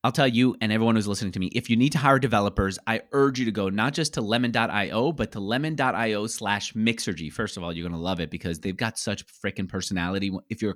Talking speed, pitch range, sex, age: 250 wpm, 105-150 Hz, male, 30-49